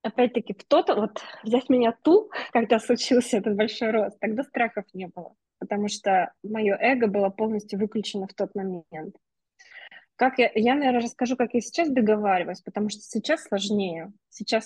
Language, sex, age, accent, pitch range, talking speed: Russian, female, 20-39, native, 200-245 Hz, 160 wpm